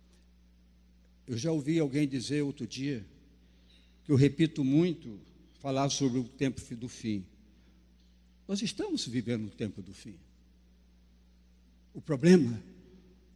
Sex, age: male, 60-79